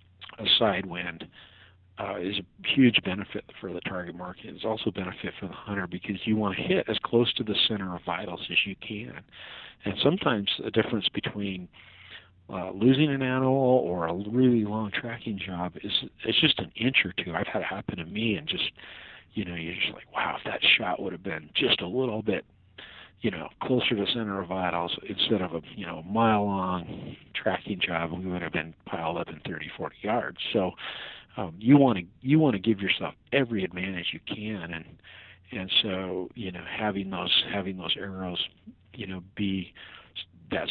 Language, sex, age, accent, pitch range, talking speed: English, male, 50-69, American, 90-110 Hz, 200 wpm